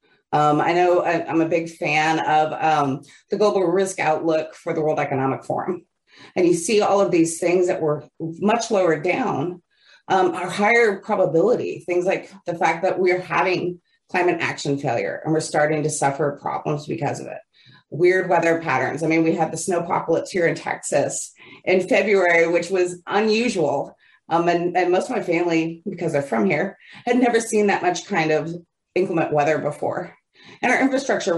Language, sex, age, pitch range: English, female, 30-49, 160-200 Hz